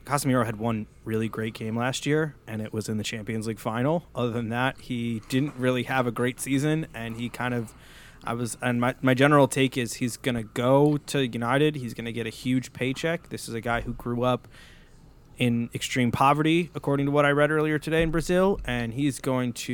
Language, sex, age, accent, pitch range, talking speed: English, male, 20-39, American, 115-140 Hz, 220 wpm